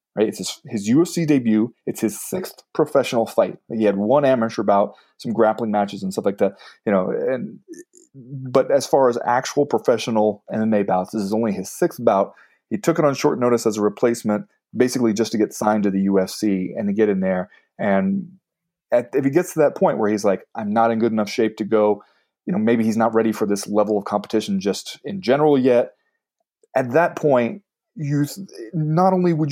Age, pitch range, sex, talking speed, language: 30-49, 110-165 Hz, male, 210 wpm, English